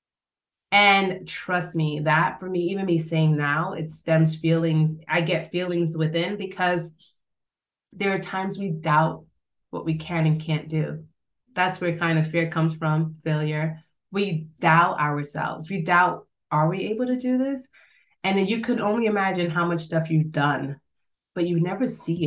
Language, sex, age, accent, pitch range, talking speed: English, female, 20-39, American, 160-195 Hz, 170 wpm